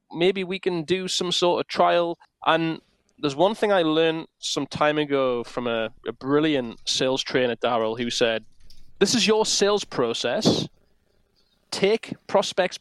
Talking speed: 155 wpm